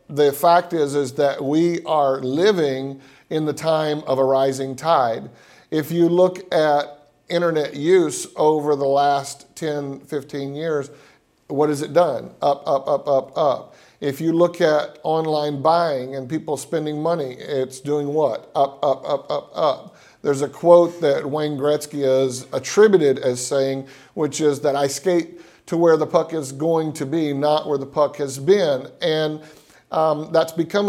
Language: English